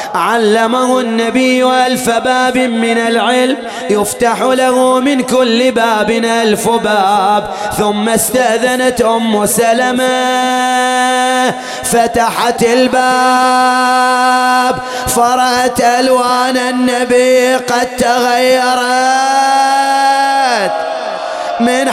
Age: 20-39